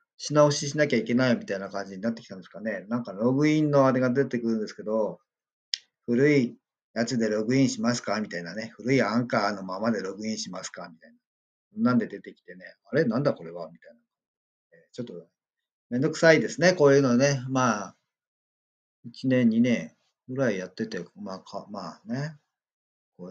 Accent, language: native, Japanese